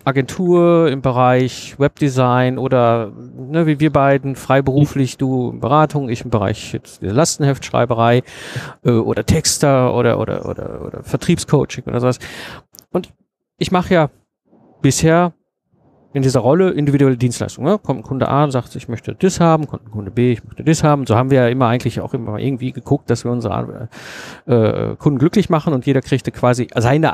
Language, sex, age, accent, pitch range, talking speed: German, male, 50-69, German, 120-150 Hz, 175 wpm